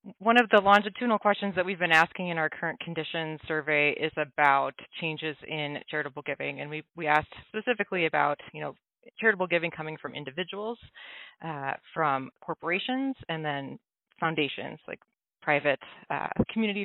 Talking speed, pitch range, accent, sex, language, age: 155 wpm, 155-200 Hz, American, female, English, 20-39